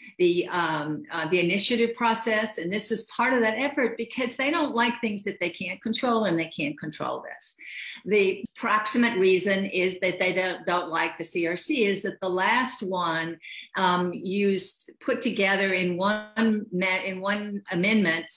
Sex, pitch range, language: female, 175-230 Hz, English